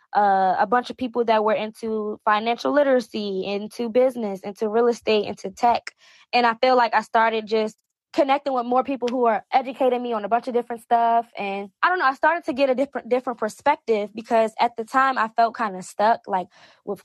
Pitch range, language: 210-245 Hz, English